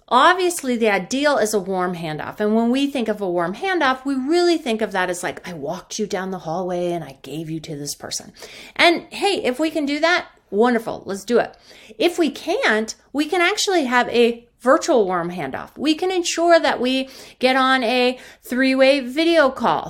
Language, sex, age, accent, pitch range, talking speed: English, female, 30-49, American, 180-255 Hz, 205 wpm